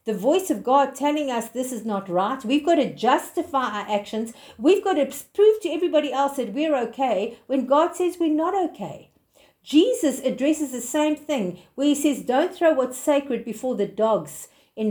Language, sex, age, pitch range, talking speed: English, female, 50-69, 240-320 Hz, 195 wpm